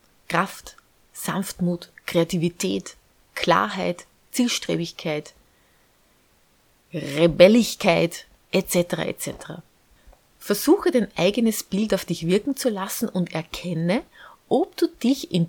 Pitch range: 170-235 Hz